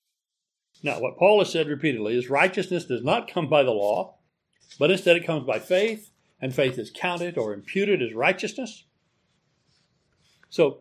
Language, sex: English, male